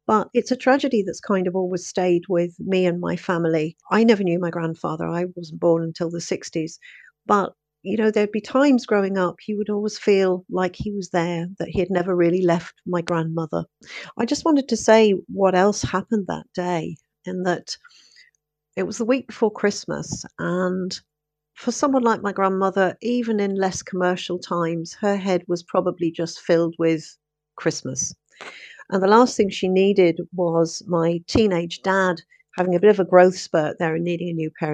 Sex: female